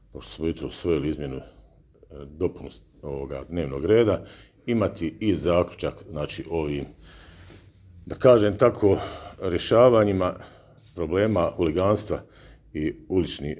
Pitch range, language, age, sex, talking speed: 75-90 Hz, Croatian, 50-69, male, 95 wpm